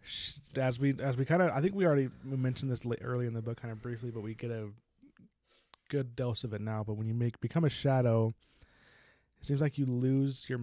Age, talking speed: 20-39, 235 wpm